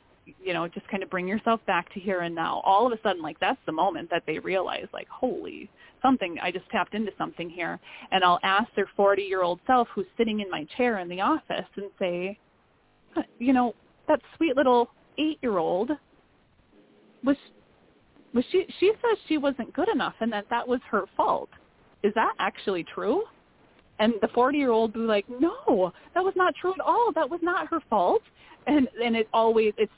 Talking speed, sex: 200 wpm, female